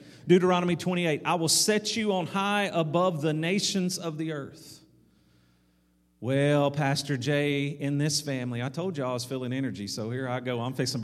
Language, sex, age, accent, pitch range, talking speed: English, male, 40-59, American, 120-155 Hz, 185 wpm